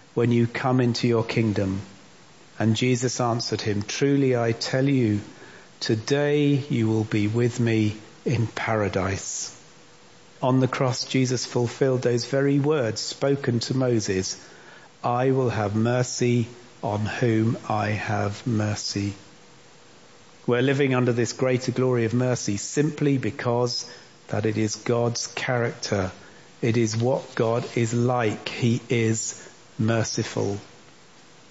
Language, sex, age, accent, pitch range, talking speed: English, male, 40-59, British, 110-130 Hz, 125 wpm